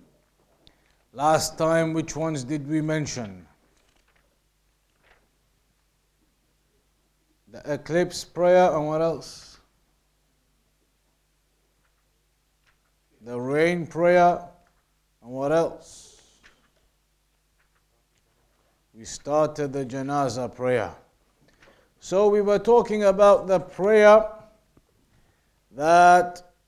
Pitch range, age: 145-185 Hz, 50-69